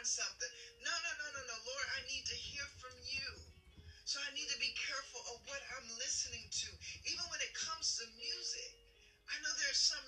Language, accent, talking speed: English, American, 200 wpm